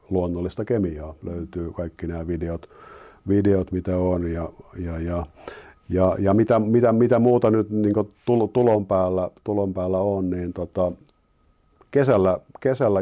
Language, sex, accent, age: Finnish, male, native, 50-69